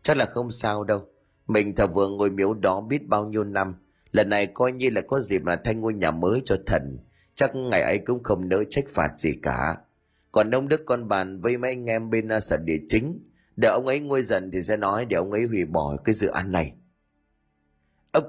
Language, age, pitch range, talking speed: Vietnamese, 20-39, 95-130 Hz, 230 wpm